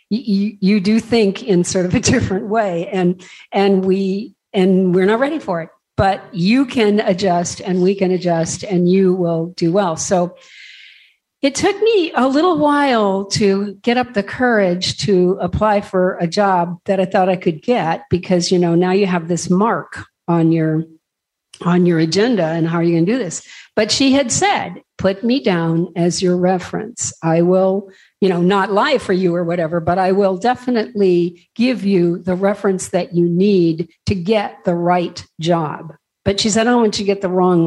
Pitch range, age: 180-225 Hz, 50-69